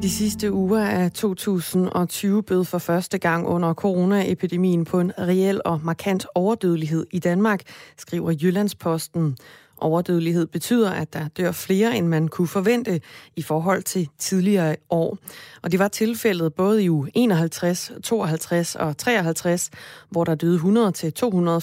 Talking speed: 145 wpm